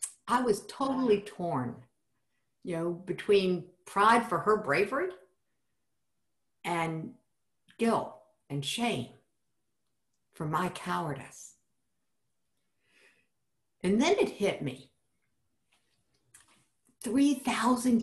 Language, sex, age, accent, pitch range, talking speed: English, female, 60-79, American, 155-230 Hz, 80 wpm